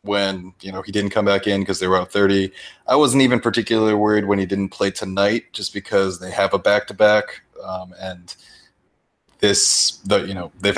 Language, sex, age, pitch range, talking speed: English, male, 20-39, 95-105 Hz, 190 wpm